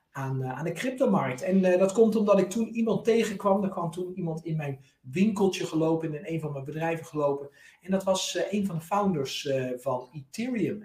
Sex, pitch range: male, 145-190 Hz